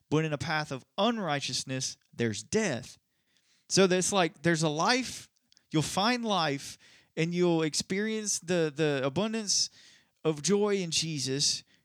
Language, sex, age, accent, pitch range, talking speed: English, male, 20-39, American, 140-180 Hz, 135 wpm